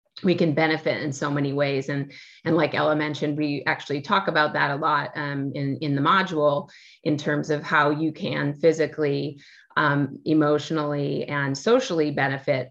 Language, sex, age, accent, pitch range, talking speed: English, female, 30-49, American, 145-165 Hz, 170 wpm